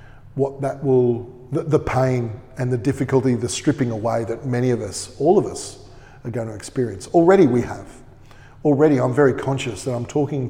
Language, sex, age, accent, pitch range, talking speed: English, male, 40-59, Australian, 115-135 Hz, 185 wpm